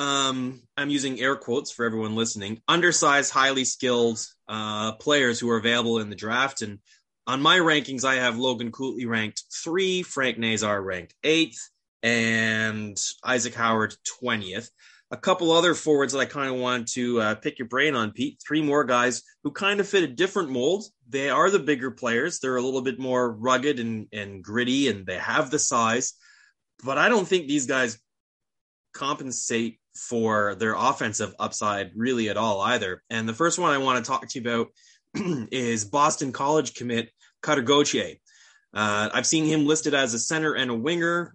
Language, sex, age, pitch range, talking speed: English, male, 20-39, 110-145 Hz, 180 wpm